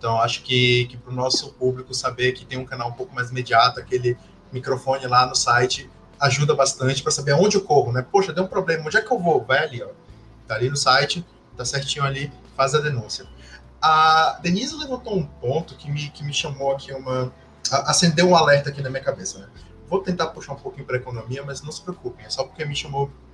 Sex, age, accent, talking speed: male, 20-39, Brazilian, 225 wpm